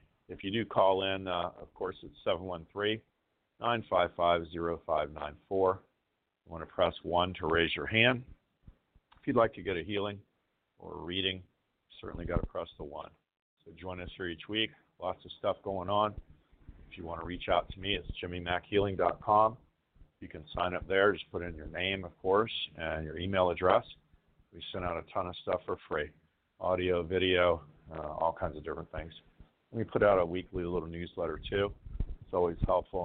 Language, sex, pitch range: English, male, 85-100 Hz